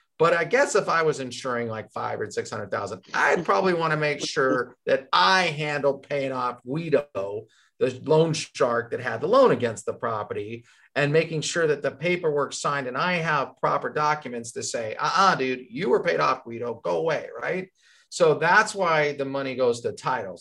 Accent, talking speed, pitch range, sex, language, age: American, 195 wpm, 125-185 Hz, male, English, 40-59